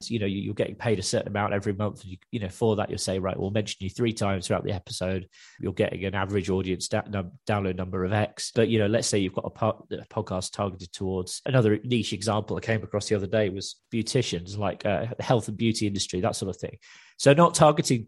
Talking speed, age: 230 wpm, 20-39